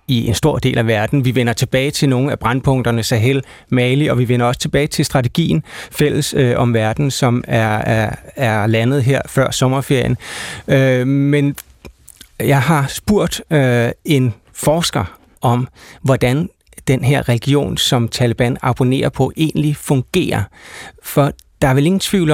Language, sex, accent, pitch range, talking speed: Danish, male, native, 125-150 Hz, 150 wpm